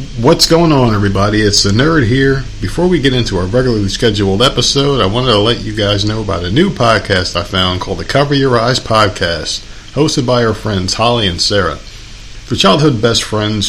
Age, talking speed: 40-59, 200 wpm